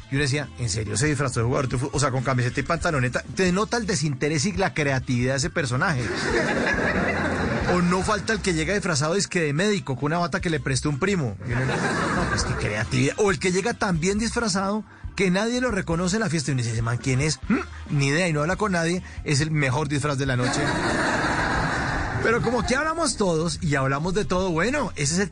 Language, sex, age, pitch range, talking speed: Spanish, male, 30-49, 145-195 Hz, 230 wpm